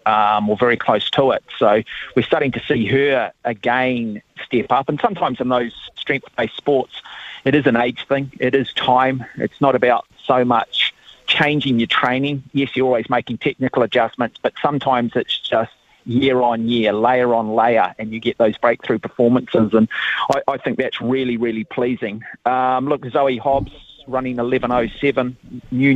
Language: English